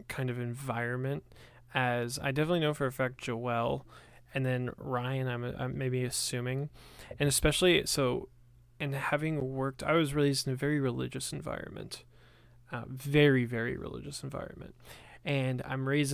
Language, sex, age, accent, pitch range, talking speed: English, male, 20-39, American, 120-140 Hz, 150 wpm